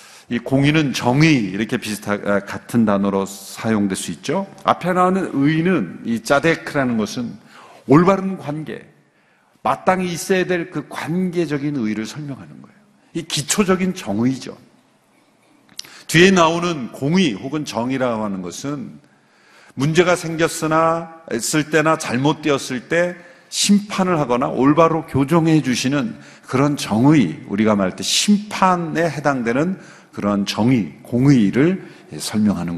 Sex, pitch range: male, 120-175 Hz